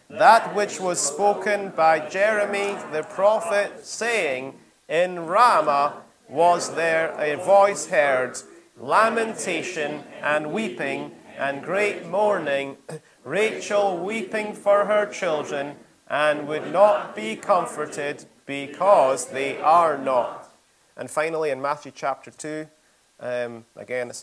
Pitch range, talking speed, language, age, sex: 130-205 Hz, 110 wpm, English, 30-49, male